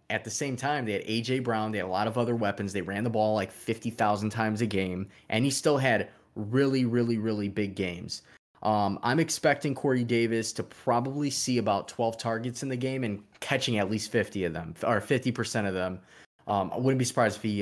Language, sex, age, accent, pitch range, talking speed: English, male, 20-39, American, 100-120 Hz, 230 wpm